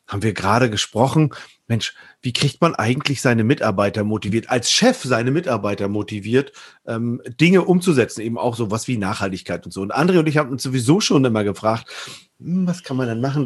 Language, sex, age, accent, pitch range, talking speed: German, male, 40-59, German, 105-135 Hz, 190 wpm